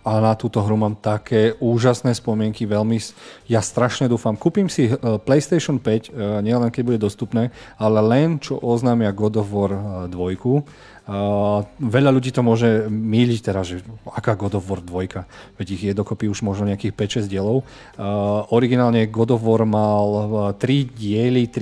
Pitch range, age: 105-120 Hz, 40-59